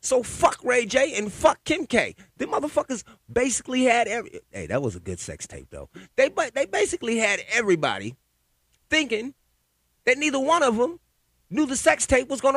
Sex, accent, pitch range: male, American, 145-225 Hz